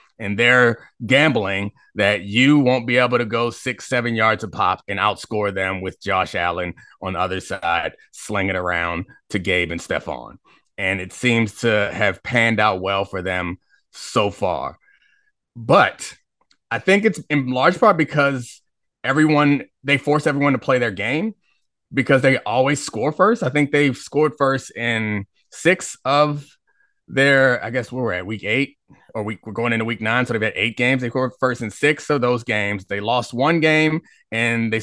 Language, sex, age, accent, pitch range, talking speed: English, male, 30-49, American, 110-145 Hz, 180 wpm